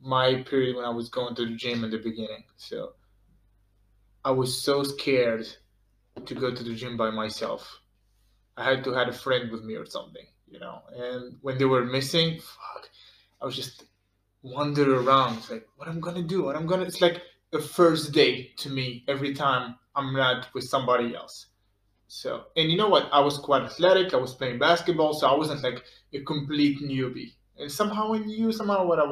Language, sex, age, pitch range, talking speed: English, male, 20-39, 115-145 Hz, 200 wpm